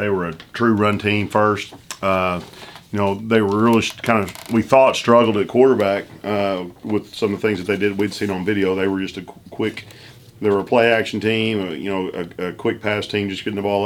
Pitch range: 100-115 Hz